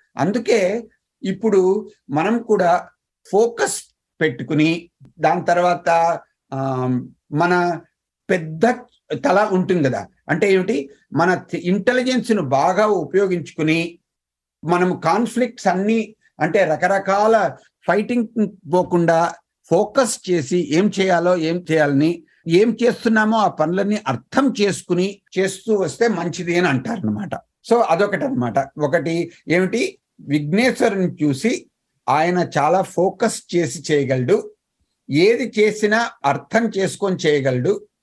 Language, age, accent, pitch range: Telugu, 50-69, native, 160-215 Hz